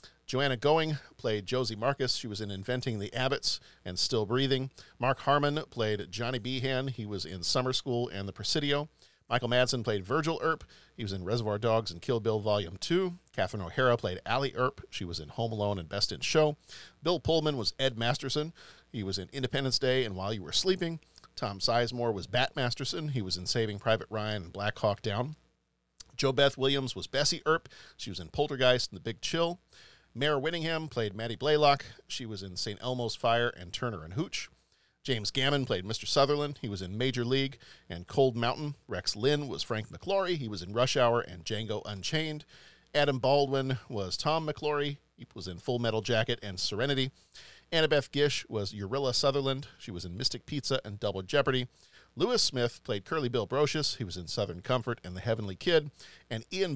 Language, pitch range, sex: English, 105-140 Hz, male